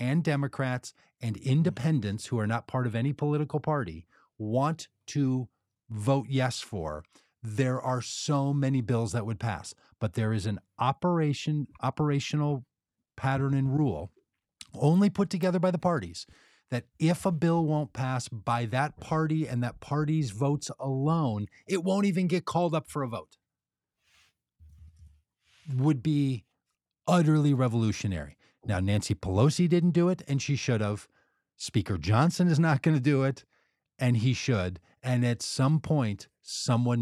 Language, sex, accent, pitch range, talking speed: English, male, American, 110-155 Hz, 150 wpm